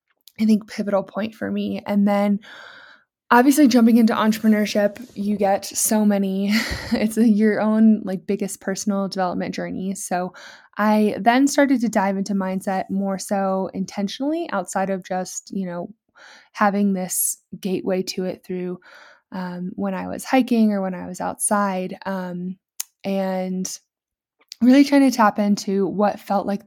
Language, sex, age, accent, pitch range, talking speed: English, female, 20-39, American, 185-215 Hz, 150 wpm